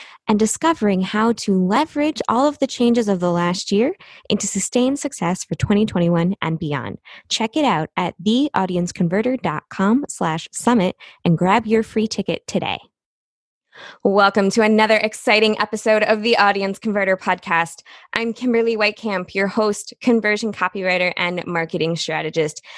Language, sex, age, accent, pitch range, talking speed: English, female, 20-39, American, 185-245 Hz, 140 wpm